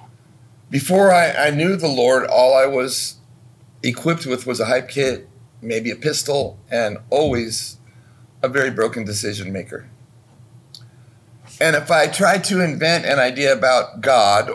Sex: male